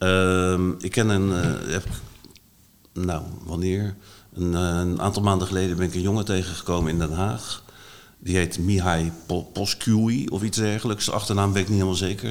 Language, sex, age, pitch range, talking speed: Dutch, male, 50-69, 85-100 Hz, 180 wpm